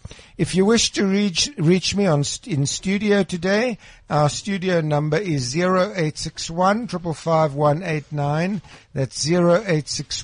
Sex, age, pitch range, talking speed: male, 60-79, 125-180 Hz, 165 wpm